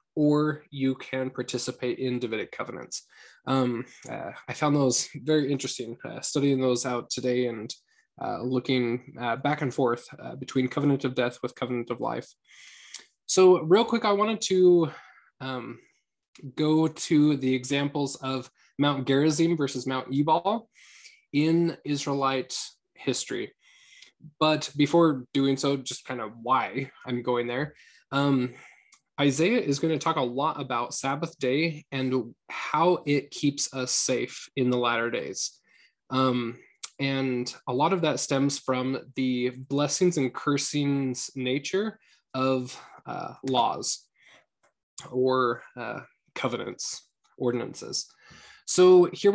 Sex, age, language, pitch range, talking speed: male, 20-39, English, 125-155 Hz, 130 wpm